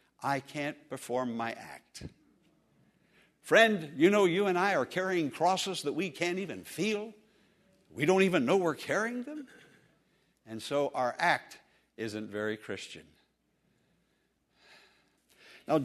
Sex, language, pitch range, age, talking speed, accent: male, English, 155-220 Hz, 60-79, 130 wpm, American